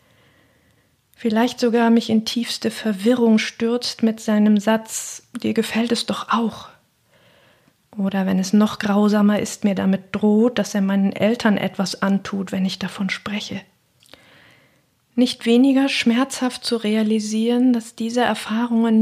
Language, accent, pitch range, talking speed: German, German, 195-225 Hz, 135 wpm